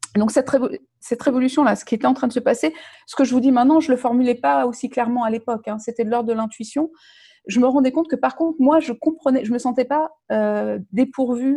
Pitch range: 220-275 Hz